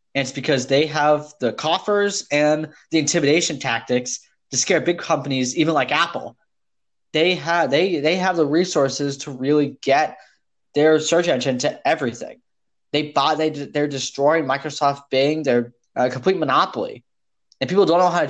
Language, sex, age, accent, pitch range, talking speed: English, male, 10-29, American, 125-160 Hz, 160 wpm